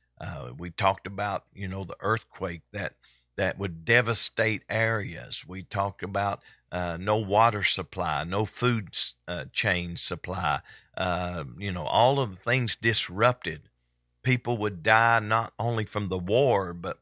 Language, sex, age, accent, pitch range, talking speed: English, male, 50-69, American, 90-120 Hz, 150 wpm